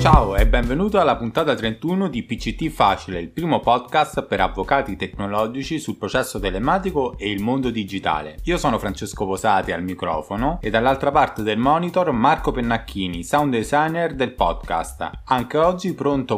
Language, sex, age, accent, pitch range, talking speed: Italian, male, 20-39, native, 100-140 Hz, 155 wpm